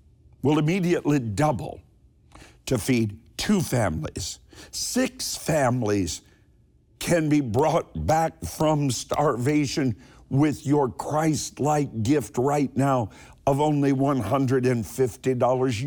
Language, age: English, 50-69